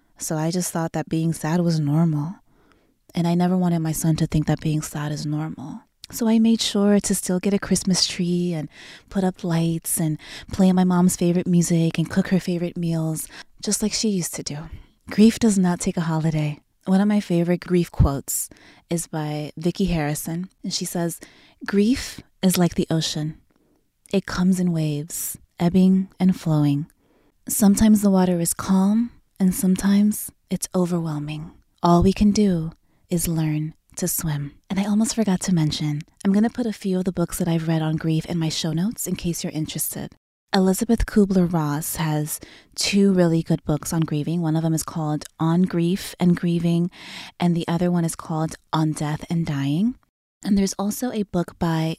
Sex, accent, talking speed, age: female, American, 190 wpm, 20-39